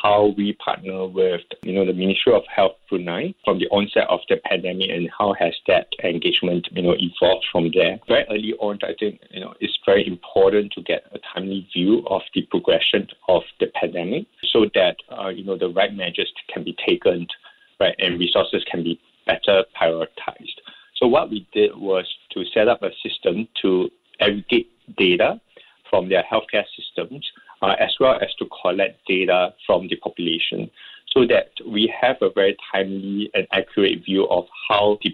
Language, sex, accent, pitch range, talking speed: English, male, Malaysian, 95-110 Hz, 180 wpm